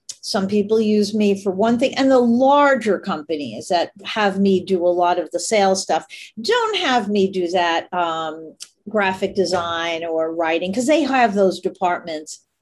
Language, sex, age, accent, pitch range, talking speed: English, female, 50-69, American, 180-240 Hz, 170 wpm